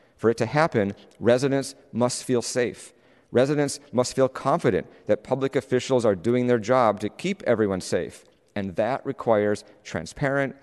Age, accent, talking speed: 50-69, American, 150 wpm